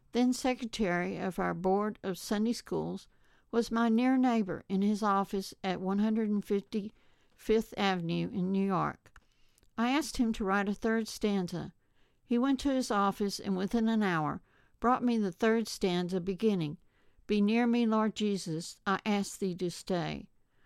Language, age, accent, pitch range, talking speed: English, 60-79, American, 185-225 Hz, 155 wpm